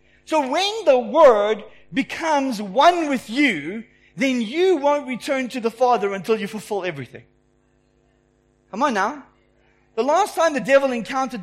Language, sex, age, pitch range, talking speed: English, male, 40-59, 180-280 Hz, 145 wpm